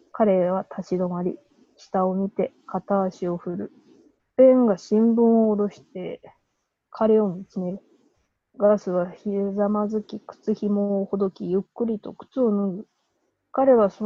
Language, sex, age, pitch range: Japanese, female, 20-39, 190-225 Hz